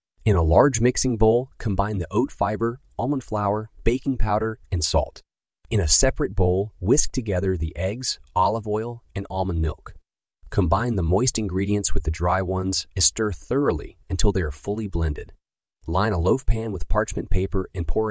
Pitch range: 85-110 Hz